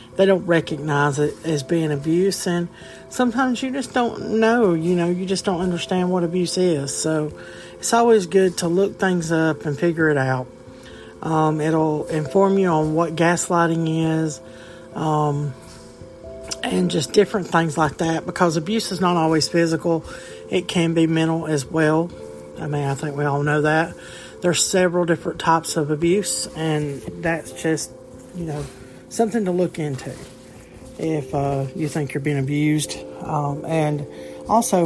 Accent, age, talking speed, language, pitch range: American, 50-69, 160 wpm, English, 140-175 Hz